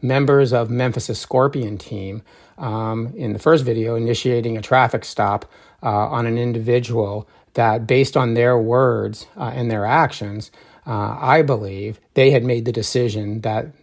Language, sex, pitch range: English, male, 110-130 Hz